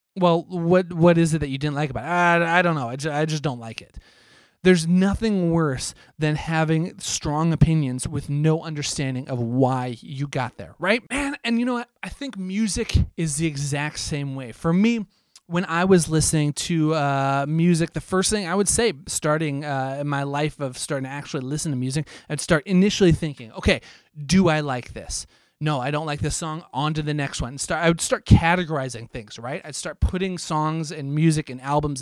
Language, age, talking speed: English, 30-49, 215 wpm